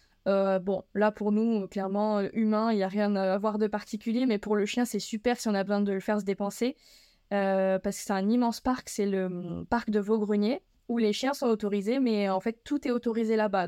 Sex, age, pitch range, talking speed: female, 20-39, 195-225 Hz, 235 wpm